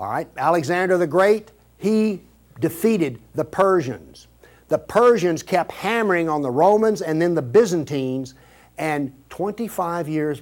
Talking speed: 130 wpm